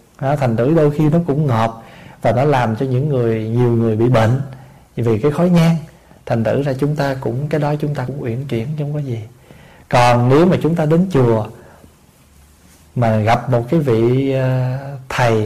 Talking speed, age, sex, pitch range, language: 200 wpm, 20-39, male, 120-155 Hz, Vietnamese